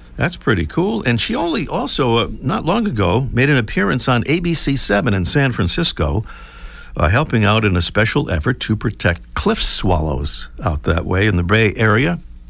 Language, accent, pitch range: English, American, 85-135 Hz